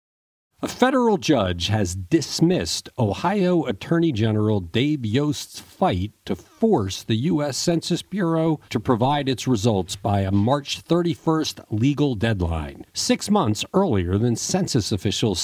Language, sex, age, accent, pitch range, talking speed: English, male, 50-69, American, 110-160 Hz, 130 wpm